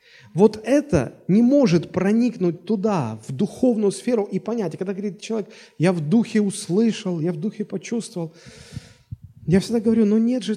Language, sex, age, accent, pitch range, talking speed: Russian, male, 30-49, native, 165-220 Hz, 160 wpm